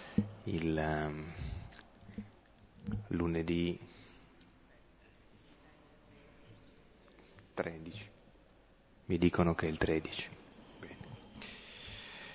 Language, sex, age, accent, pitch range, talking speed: Italian, male, 30-49, native, 85-105 Hz, 55 wpm